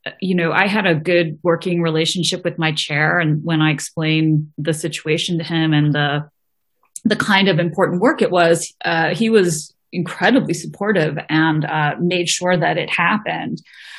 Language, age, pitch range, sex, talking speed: English, 30-49, 160-190 Hz, female, 175 wpm